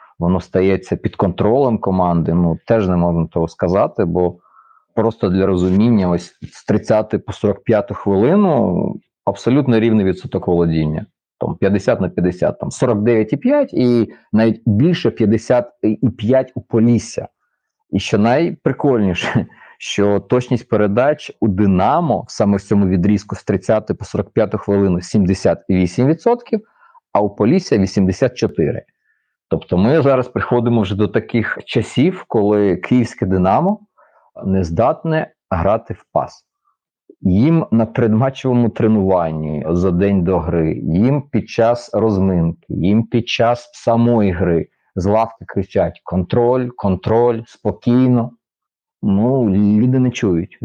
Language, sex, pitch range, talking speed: Ukrainian, male, 95-120 Hz, 120 wpm